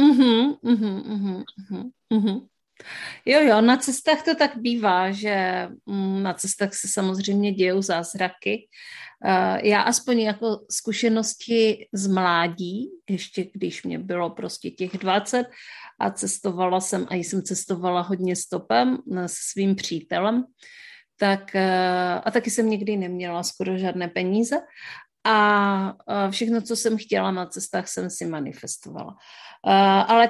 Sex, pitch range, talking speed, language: female, 195-240 Hz, 125 wpm, Czech